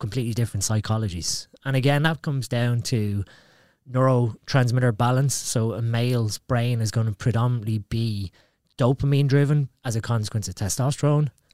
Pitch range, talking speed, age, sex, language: 110-135 Hz, 140 wpm, 20-39, male, English